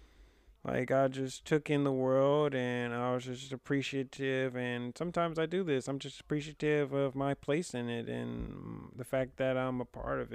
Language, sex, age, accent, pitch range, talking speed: English, male, 20-39, American, 110-140 Hz, 190 wpm